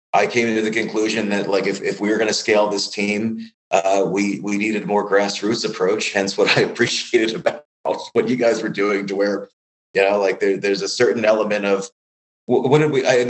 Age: 30-49